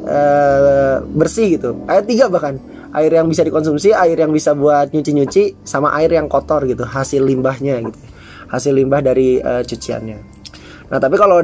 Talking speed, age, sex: 150 wpm, 20-39, male